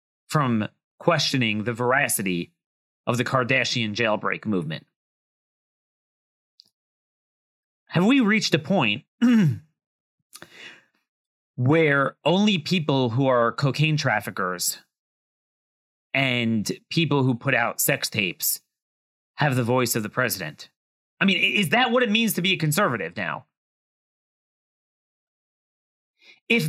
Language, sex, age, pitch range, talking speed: English, male, 30-49, 120-185 Hz, 105 wpm